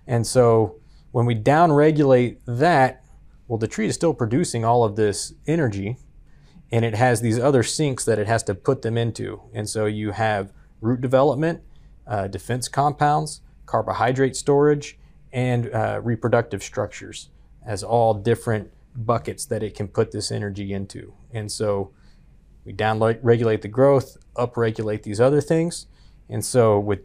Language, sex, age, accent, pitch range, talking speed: English, male, 30-49, American, 110-130 Hz, 150 wpm